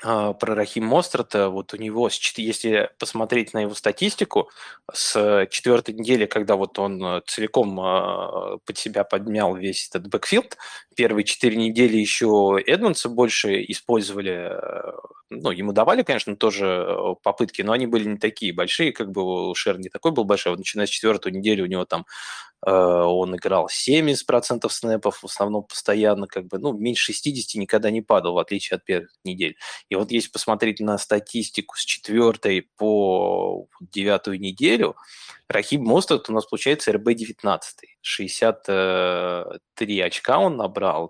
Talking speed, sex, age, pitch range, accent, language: 145 wpm, male, 20-39, 100-120 Hz, native, Russian